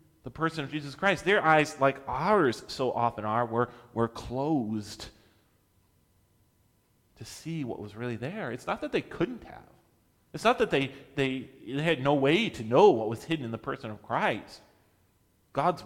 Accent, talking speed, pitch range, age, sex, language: American, 180 wpm, 115-155 Hz, 30-49, male, English